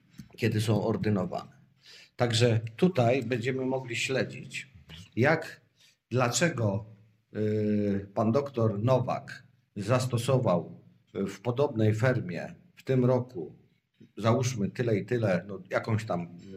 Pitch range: 110-135 Hz